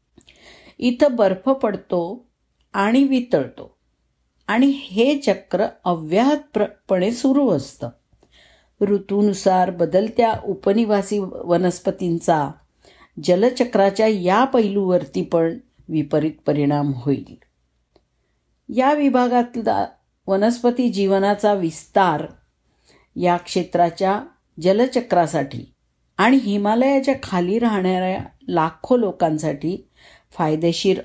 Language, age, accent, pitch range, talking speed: Marathi, 50-69, native, 160-225 Hz, 75 wpm